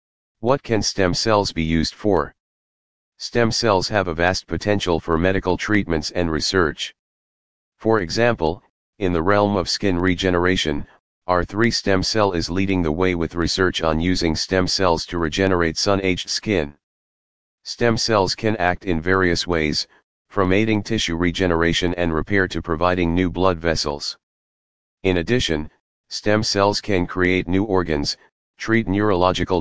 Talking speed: 145 wpm